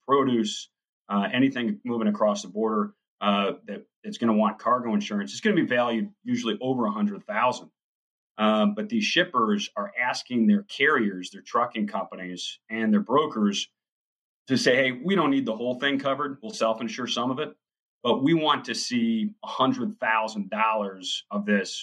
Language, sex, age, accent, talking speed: English, male, 30-49, American, 170 wpm